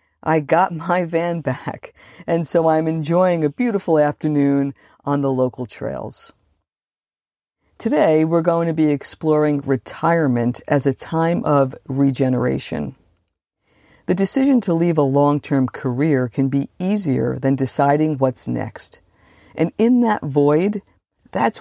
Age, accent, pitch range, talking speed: 50-69, American, 135-165 Hz, 130 wpm